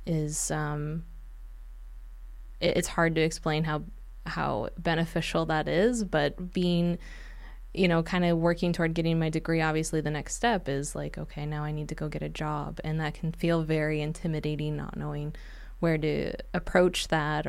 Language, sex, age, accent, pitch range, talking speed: English, female, 20-39, American, 150-175 Hz, 170 wpm